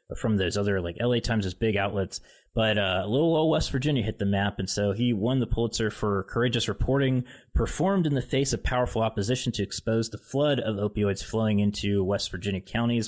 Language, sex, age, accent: English, male, 30-49, American